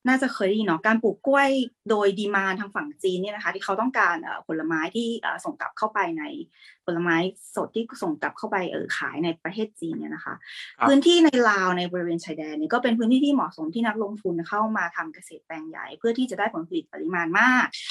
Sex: female